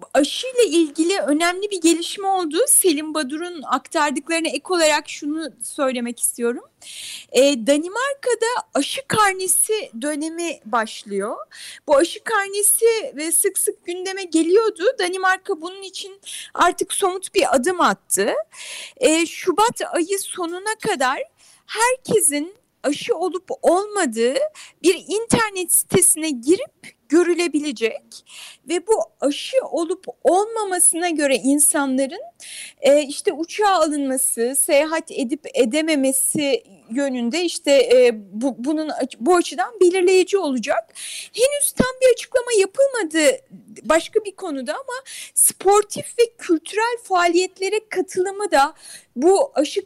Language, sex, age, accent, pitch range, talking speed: Turkish, female, 30-49, native, 295-400 Hz, 110 wpm